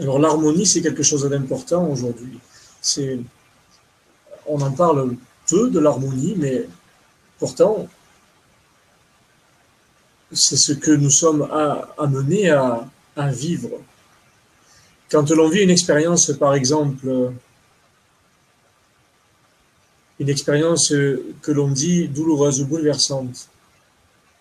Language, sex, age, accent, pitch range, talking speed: French, male, 40-59, French, 130-155 Hz, 105 wpm